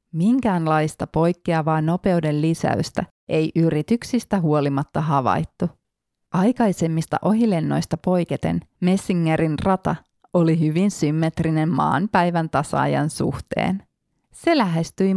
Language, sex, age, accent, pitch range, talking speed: Finnish, female, 30-49, native, 155-185 Hz, 85 wpm